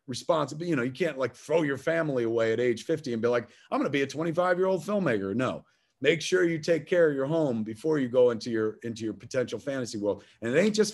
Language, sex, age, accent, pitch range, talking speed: English, male, 30-49, American, 130-180 Hz, 260 wpm